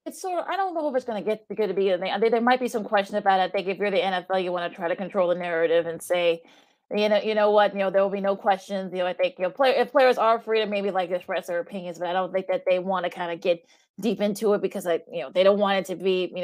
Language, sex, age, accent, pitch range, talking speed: English, female, 20-39, American, 185-230 Hz, 340 wpm